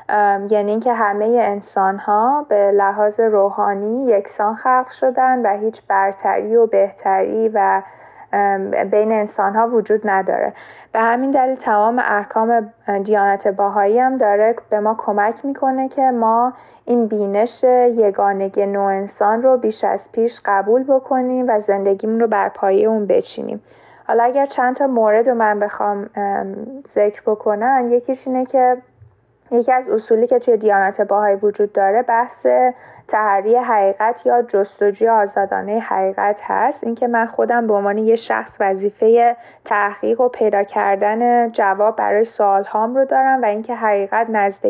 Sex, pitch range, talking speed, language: female, 205-240 Hz, 150 wpm, Persian